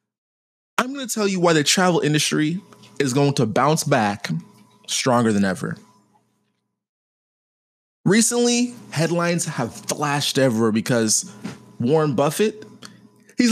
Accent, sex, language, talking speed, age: American, male, English, 115 wpm, 20-39